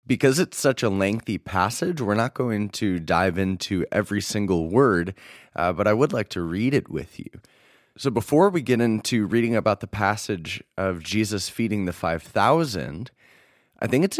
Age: 20-39